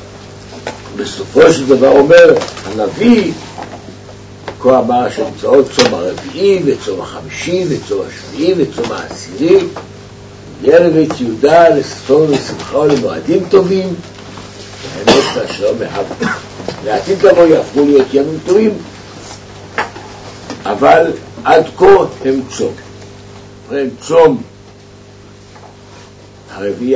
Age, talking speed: 60-79, 85 wpm